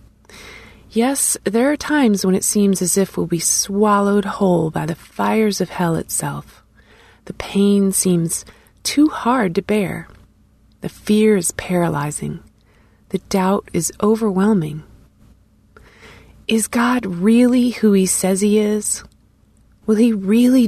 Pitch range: 170-215 Hz